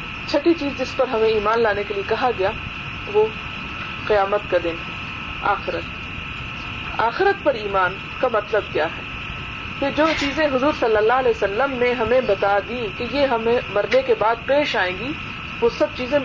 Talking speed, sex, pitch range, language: 175 wpm, female, 215-280 Hz, Urdu